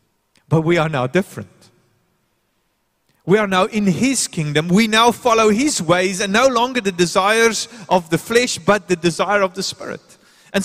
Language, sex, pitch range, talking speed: English, male, 160-225 Hz, 175 wpm